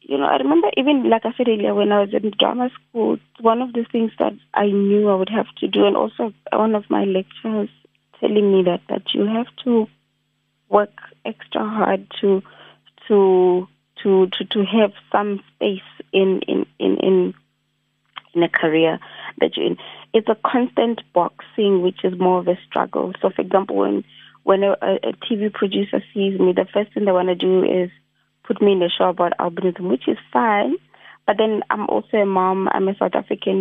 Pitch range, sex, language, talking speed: 180-210 Hz, female, English, 195 wpm